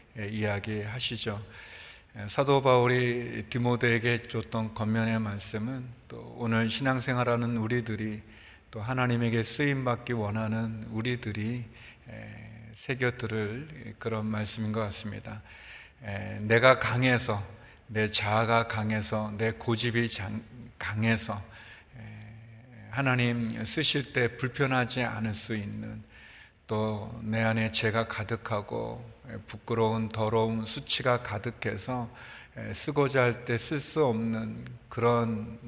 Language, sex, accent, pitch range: Korean, male, native, 110-120 Hz